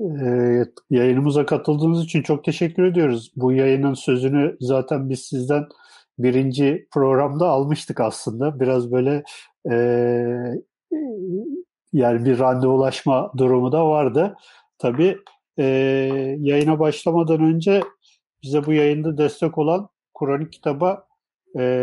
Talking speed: 105 wpm